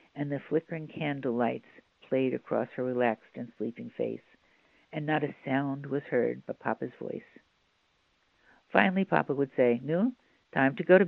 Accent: American